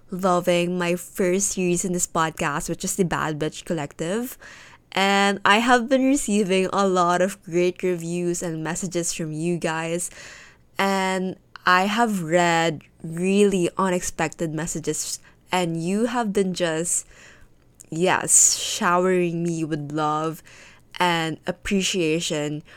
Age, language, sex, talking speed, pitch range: 20-39, Filipino, female, 125 wpm, 165-195 Hz